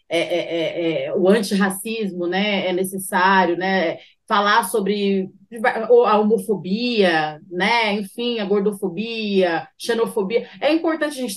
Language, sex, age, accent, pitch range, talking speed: Portuguese, female, 30-49, Brazilian, 200-250 Hz, 100 wpm